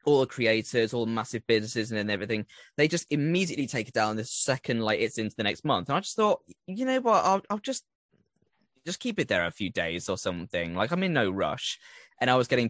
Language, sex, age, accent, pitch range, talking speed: English, male, 10-29, British, 110-145 Hz, 240 wpm